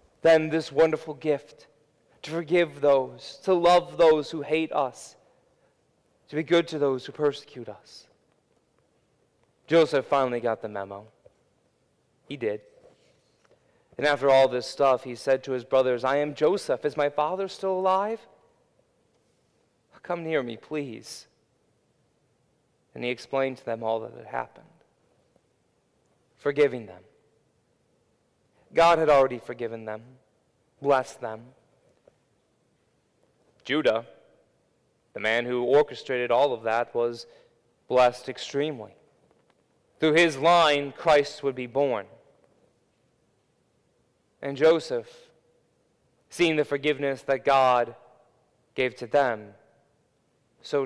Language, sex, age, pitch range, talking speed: English, male, 30-49, 120-155 Hz, 115 wpm